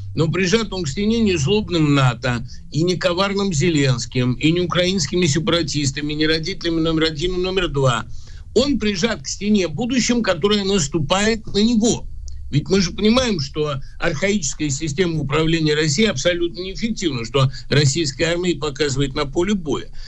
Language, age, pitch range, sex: Russian, 60-79, 140-190 Hz, male